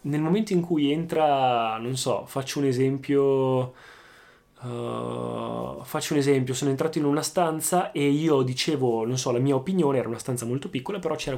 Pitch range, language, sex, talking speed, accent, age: 125-180 Hz, Italian, male, 180 wpm, native, 20-39